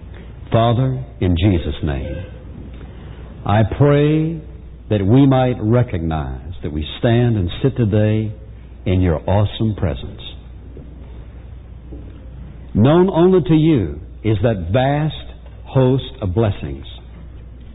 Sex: male